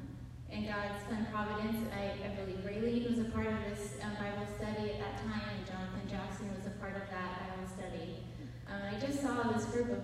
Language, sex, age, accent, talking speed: English, female, 10-29, American, 205 wpm